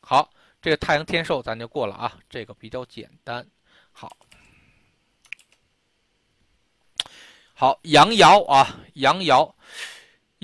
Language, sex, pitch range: Chinese, male, 105-155 Hz